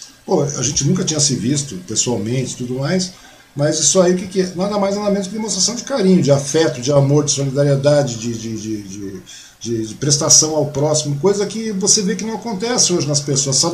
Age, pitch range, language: 50-69, 140-190 Hz, Portuguese